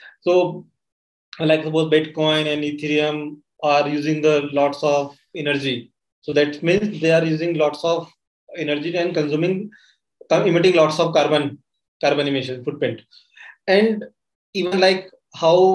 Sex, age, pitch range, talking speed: male, 20-39, 145-165 Hz, 130 wpm